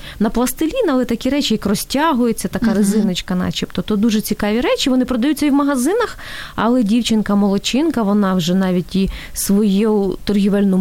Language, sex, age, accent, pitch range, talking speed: Ukrainian, female, 20-39, native, 200-265 Hz, 150 wpm